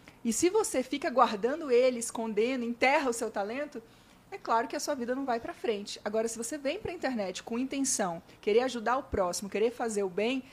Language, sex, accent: Portuguese, female, Brazilian